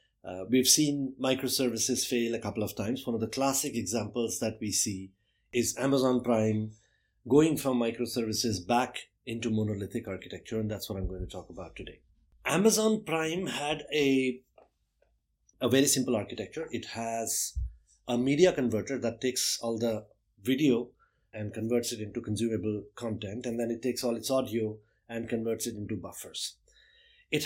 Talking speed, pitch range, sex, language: 160 wpm, 110-130 Hz, male, English